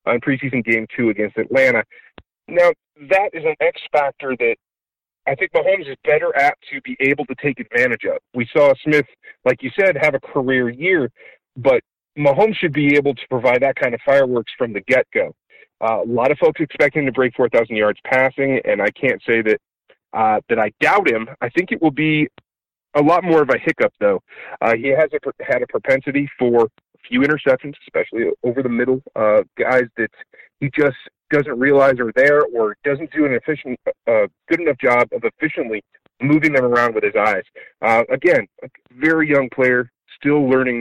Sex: male